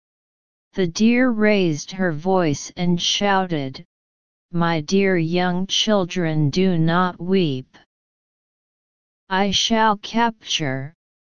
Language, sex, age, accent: English, female, 40-59, American